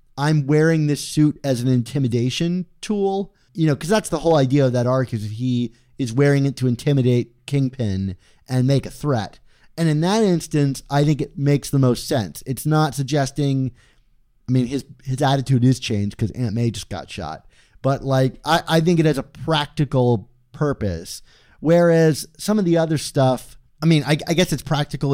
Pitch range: 120-155 Hz